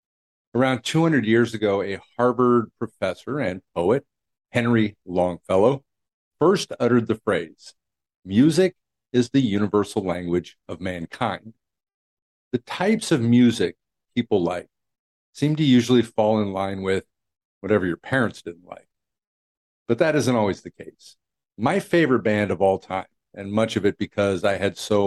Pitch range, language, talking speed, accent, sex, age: 95-120 Hz, English, 145 wpm, American, male, 50-69